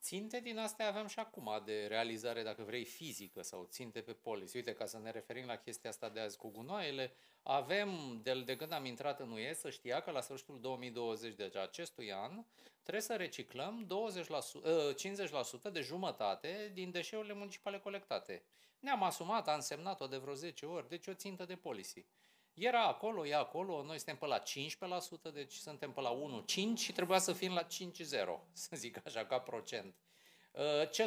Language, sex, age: Romanian, male, 30-49